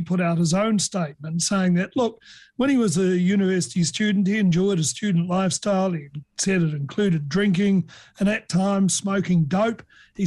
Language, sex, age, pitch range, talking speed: English, male, 50-69, 170-200 Hz, 175 wpm